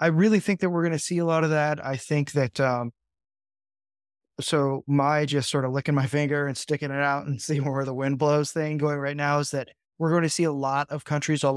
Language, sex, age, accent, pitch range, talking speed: English, male, 20-39, American, 125-150 Hz, 255 wpm